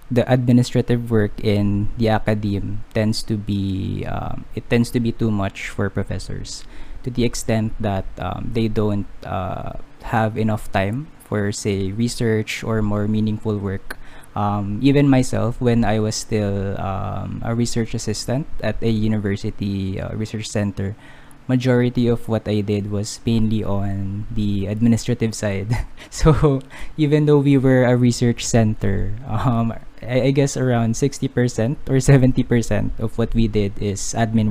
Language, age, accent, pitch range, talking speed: English, 20-39, Filipino, 105-125 Hz, 150 wpm